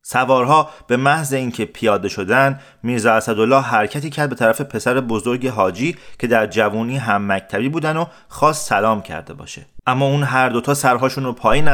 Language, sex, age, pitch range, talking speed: Persian, male, 30-49, 110-145 Hz, 165 wpm